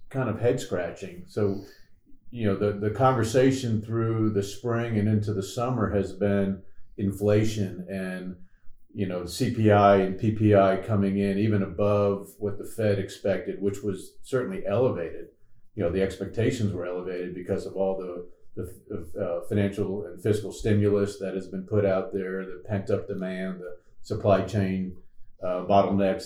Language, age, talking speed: English, 40-59, 160 wpm